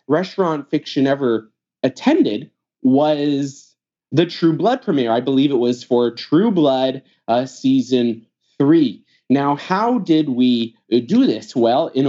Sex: male